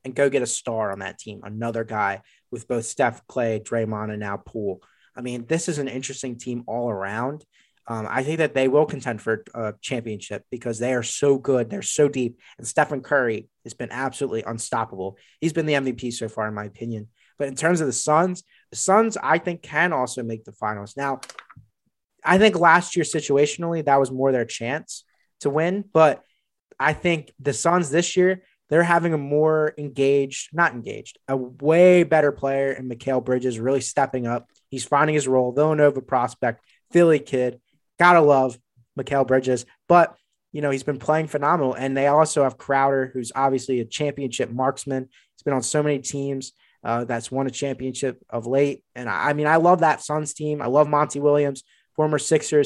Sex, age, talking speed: male, 30-49, 195 wpm